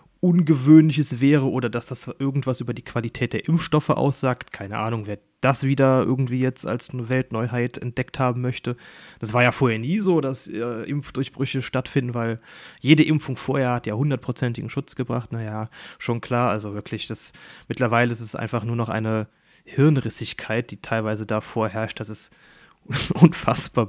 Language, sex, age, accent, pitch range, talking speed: German, male, 30-49, German, 110-135 Hz, 160 wpm